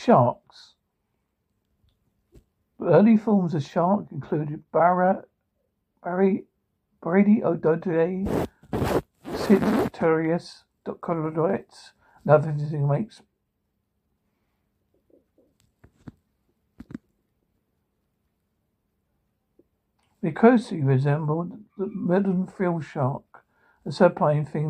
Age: 60-79